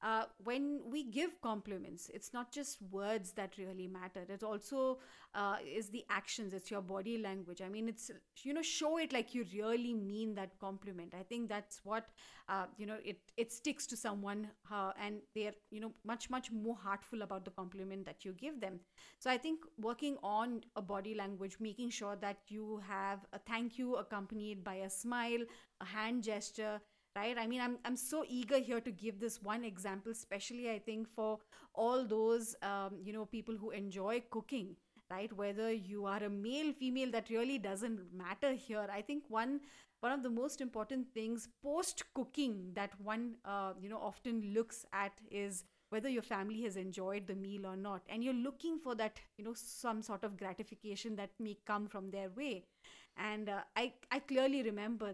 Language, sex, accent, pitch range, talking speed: English, female, Indian, 200-240 Hz, 190 wpm